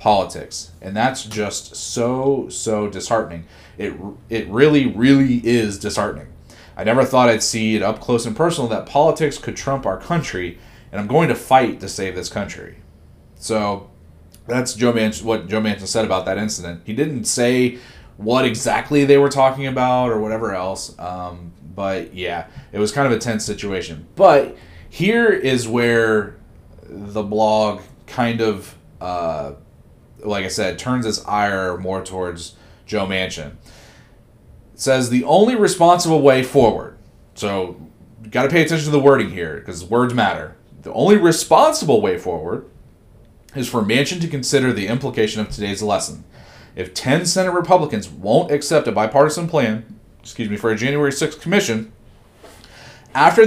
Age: 30-49